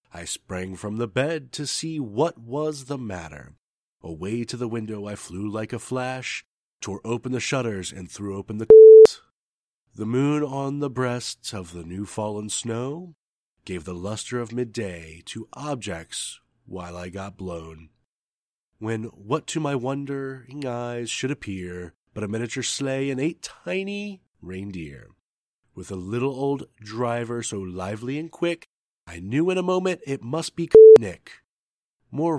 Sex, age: male, 30-49